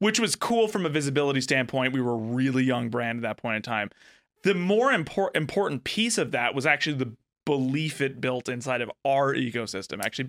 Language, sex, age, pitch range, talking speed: English, male, 20-39, 130-165 Hz, 205 wpm